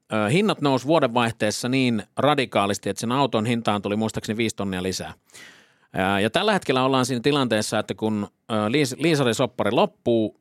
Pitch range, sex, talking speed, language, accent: 105-135 Hz, male, 140 wpm, Finnish, native